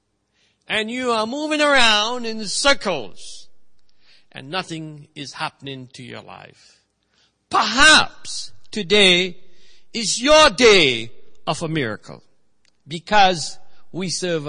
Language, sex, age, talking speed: English, male, 60-79, 105 wpm